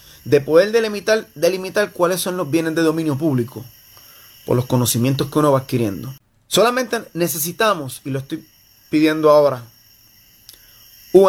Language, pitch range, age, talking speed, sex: Spanish, 115-175 Hz, 30-49, 140 wpm, male